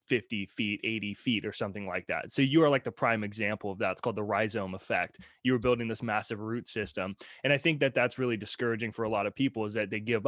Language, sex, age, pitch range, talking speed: English, male, 20-39, 110-130 Hz, 265 wpm